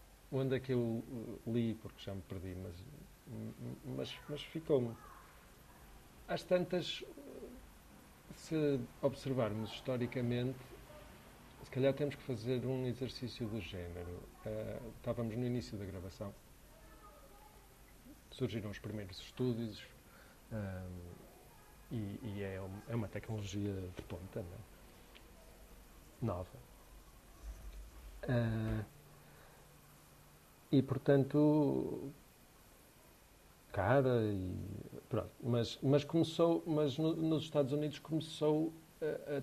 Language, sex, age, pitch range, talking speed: Portuguese, male, 50-69, 100-140 Hz, 95 wpm